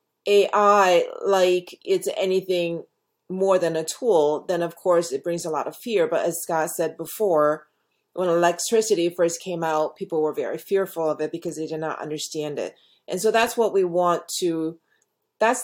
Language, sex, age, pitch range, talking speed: English, female, 30-49, 160-200 Hz, 180 wpm